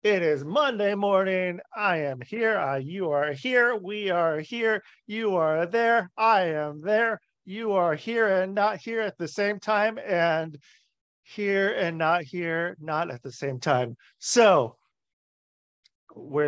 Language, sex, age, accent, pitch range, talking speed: English, male, 40-59, American, 160-215 Hz, 150 wpm